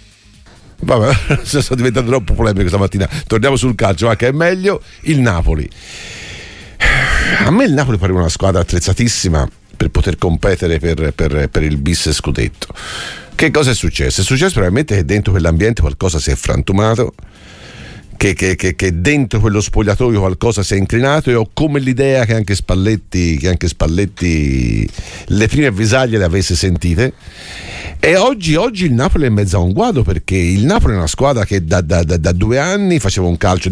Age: 50-69